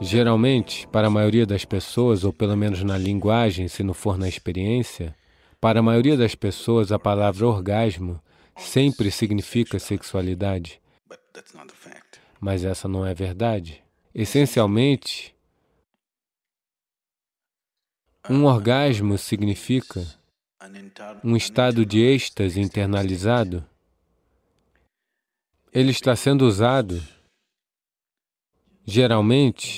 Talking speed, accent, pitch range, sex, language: 95 wpm, Brazilian, 95-120 Hz, male, English